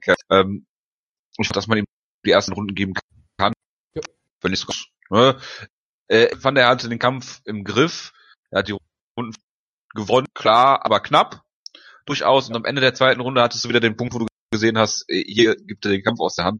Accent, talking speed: German, 210 wpm